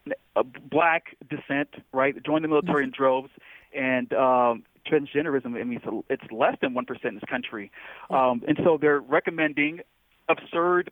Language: English